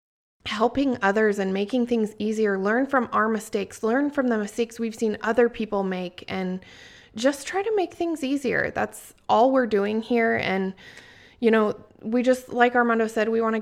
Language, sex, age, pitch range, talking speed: English, female, 20-39, 200-235 Hz, 185 wpm